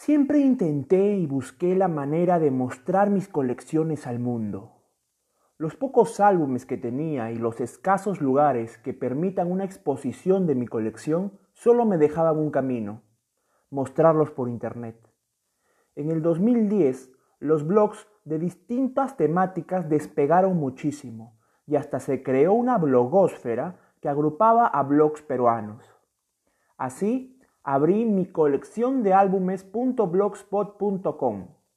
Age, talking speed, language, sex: 30-49, 120 wpm, Spanish, male